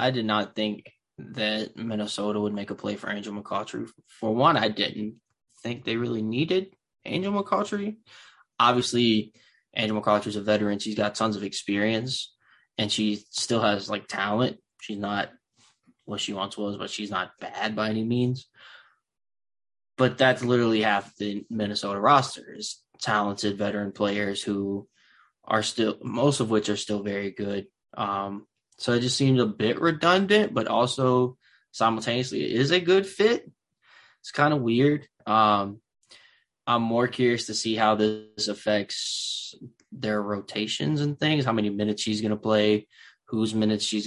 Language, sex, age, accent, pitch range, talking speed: English, male, 20-39, American, 105-120 Hz, 160 wpm